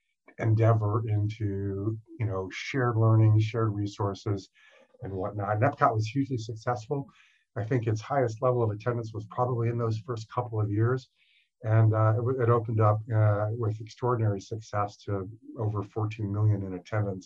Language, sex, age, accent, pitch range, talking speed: English, male, 50-69, American, 105-115 Hz, 160 wpm